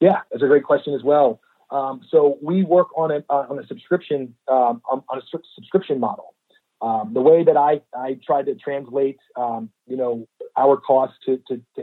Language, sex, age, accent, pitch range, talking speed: English, male, 40-59, American, 125-145 Hz, 195 wpm